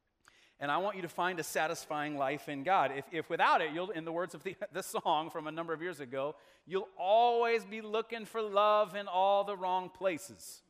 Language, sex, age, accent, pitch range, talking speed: English, male, 40-59, American, 150-205 Hz, 225 wpm